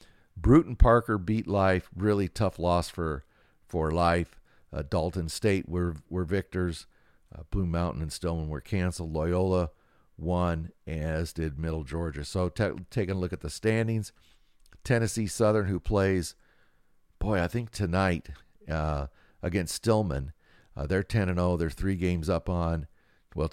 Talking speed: 145 wpm